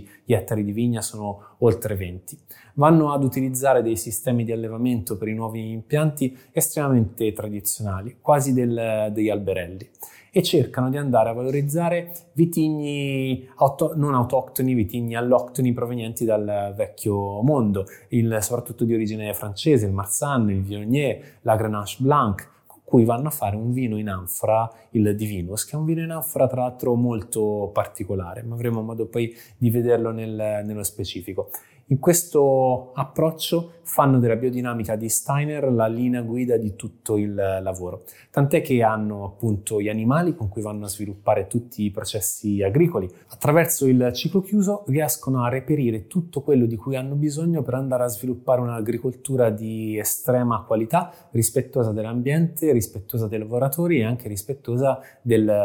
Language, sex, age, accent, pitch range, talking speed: Italian, male, 20-39, native, 105-135 Hz, 150 wpm